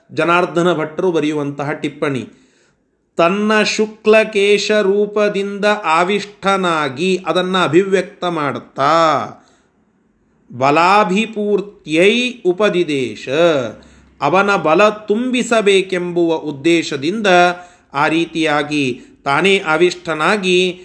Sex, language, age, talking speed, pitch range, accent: male, Kannada, 40-59, 60 wpm, 160-210 Hz, native